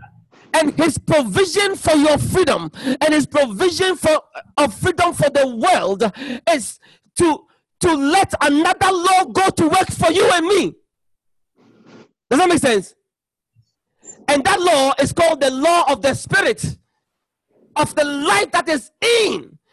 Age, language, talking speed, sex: 40-59, English, 145 wpm, male